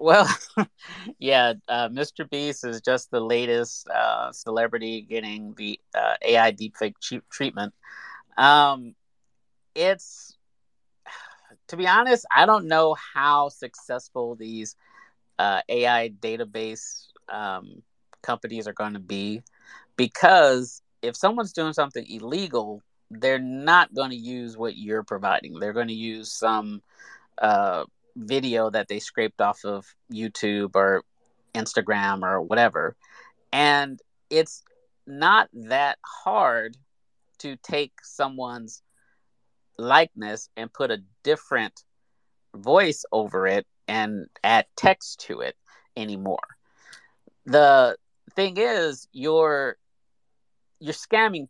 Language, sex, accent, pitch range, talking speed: English, male, American, 110-145 Hz, 110 wpm